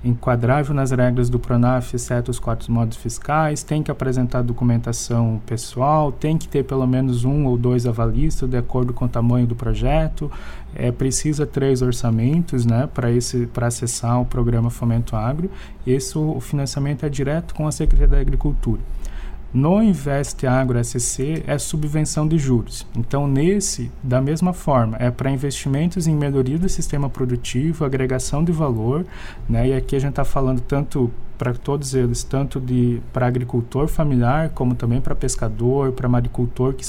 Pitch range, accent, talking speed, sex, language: 120-150 Hz, Brazilian, 160 wpm, male, Portuguese